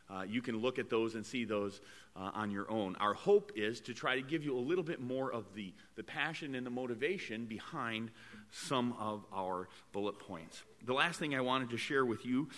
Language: English